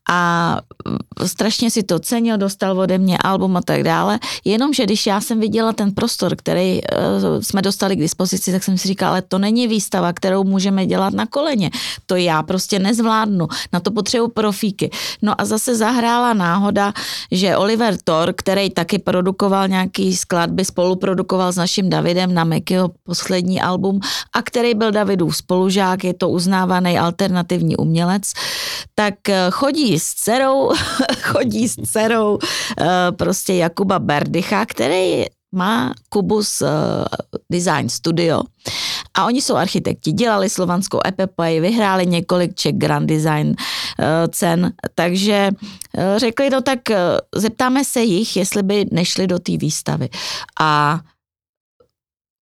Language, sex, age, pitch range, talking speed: Czech, female, 30-49, 180-215 Hz, 140 wpm